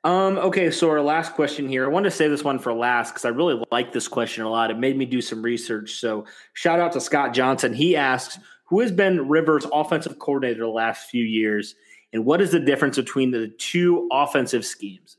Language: English